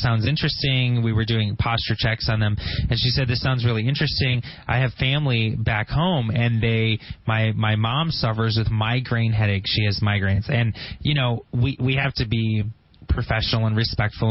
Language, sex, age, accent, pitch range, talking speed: English, male, 20-39, American, 105-125 Hz, 185 wpm